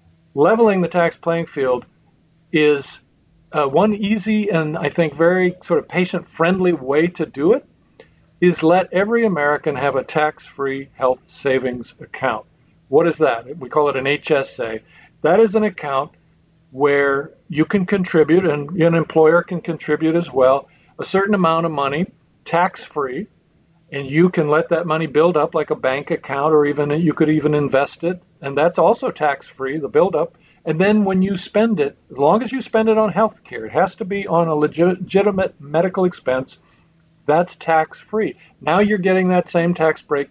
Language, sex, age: English, male, 50-69